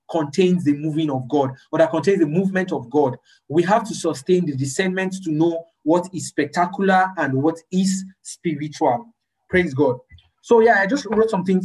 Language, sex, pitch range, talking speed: English, male, 155-205 Hz, 180 wpm